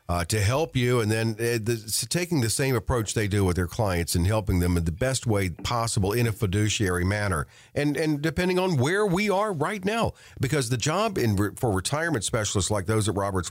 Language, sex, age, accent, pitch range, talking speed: English, male, 50-69, American, 95-130 Hz, 220 wpm